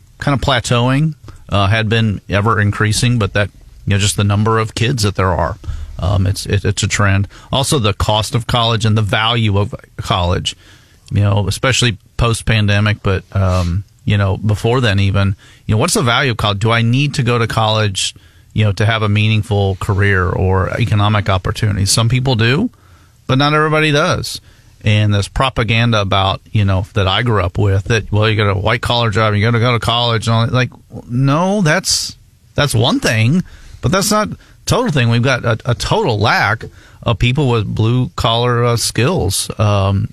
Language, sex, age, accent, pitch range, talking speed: English, male, 40-59, American, 100-120 Hz, 195 wpm